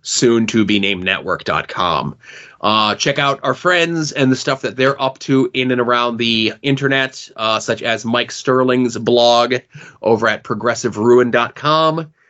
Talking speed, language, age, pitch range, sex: 150 wpm, English, 20-39, 120-140 Hz, male